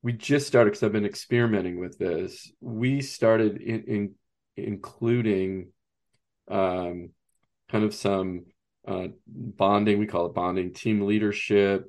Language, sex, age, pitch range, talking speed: English, male, 40-59, 100-115 Hz, 130 wpm